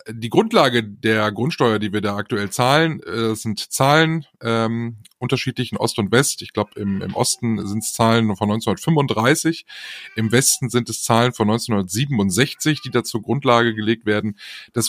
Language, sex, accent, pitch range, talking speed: German, male, German, 110-140 Hz, 165 wpm